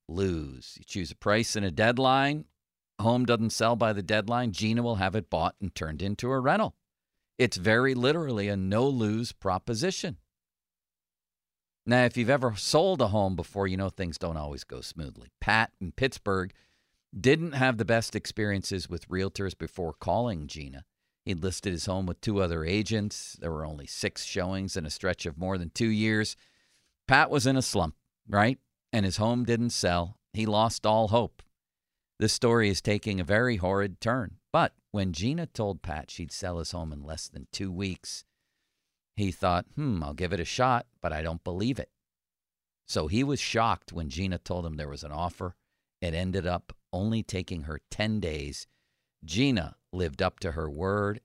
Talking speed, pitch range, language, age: 185 wpm, 85-110 Hz, English, 50-69